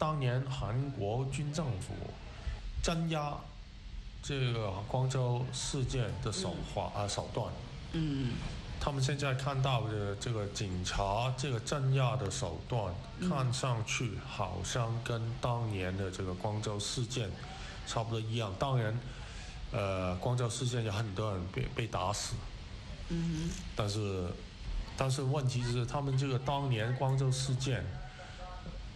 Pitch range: 100-130 Hz